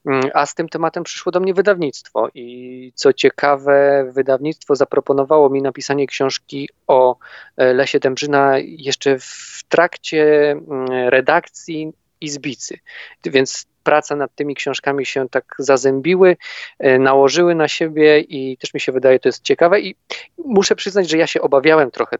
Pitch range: 130-155 Hz